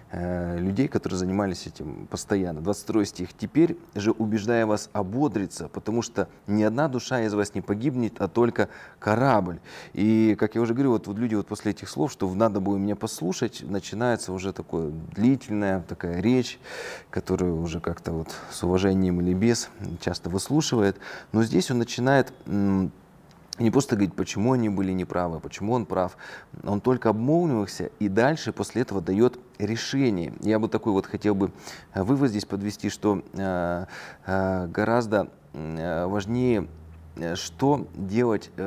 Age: 30-49